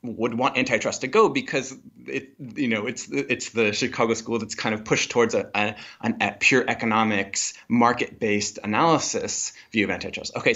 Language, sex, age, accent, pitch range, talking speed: English, male, 20-39, American, 100-130 Hz, 170 wpm